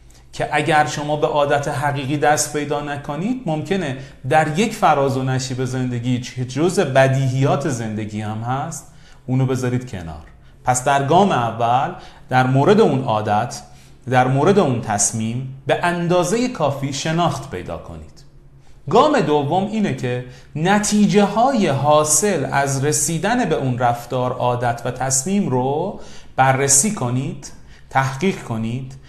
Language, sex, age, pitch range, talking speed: Persian, male, 30-49, 125-155 Hz, 130 wpm